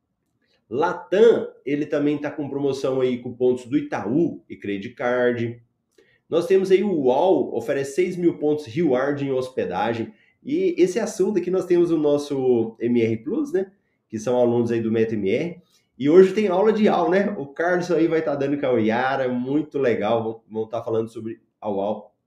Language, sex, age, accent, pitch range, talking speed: Portuguese, male, 20-39, Brazilian, 120-185 Hz, 185 wpm